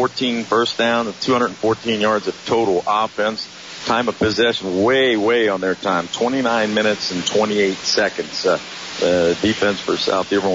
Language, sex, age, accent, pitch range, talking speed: English, male, 50-69, American, 90-110 Hz, 160 wpm